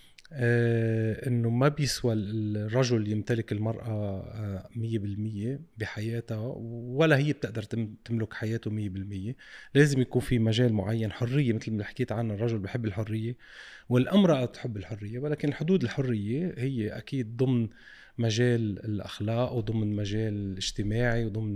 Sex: male